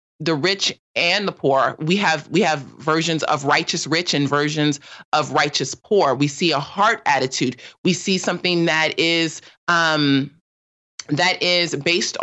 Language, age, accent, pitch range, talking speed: English, 30-49, American, 155-180 Hz, 155 wpm